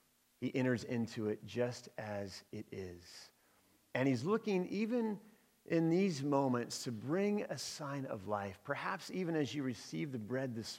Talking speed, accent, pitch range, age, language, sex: 160 wpm, American, 110-145 Hz, 40-59, English, male